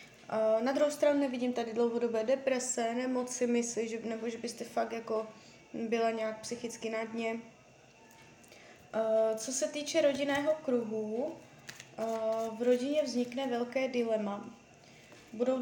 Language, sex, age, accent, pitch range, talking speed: Czech, female, 20-39, native, 225-265 Hz, 120 wpm